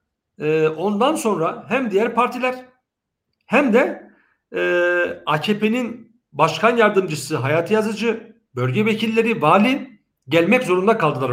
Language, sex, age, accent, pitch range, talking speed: German, male, 50-69, Turkish, 155-230 Hz, 95 wpm